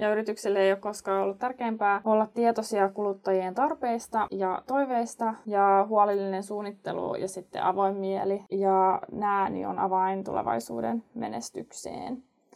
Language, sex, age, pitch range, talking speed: Finnish, female, 20-39, 190-225 Hz, 130 wpm